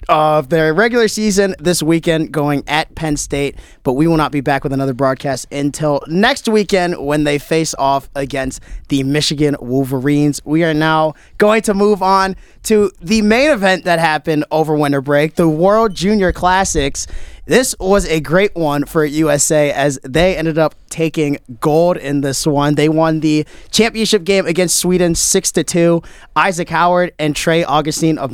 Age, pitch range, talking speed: 20-39, 140-175 Hz, 170 wpm